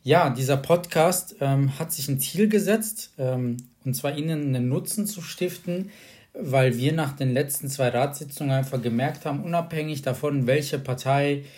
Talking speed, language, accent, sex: 160 wpm, German, German, male